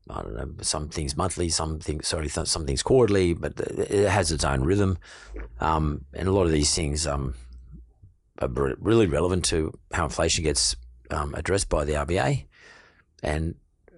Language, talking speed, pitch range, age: English, 165 wpm, 75-95 Hz, 50-69